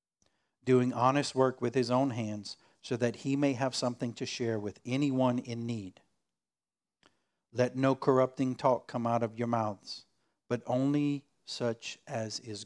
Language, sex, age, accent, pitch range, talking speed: English, male, 50-69, American, 110-135 Hz, 155 wpm